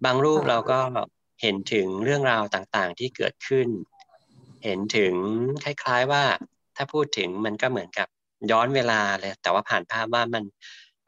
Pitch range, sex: 105-130 Hz, male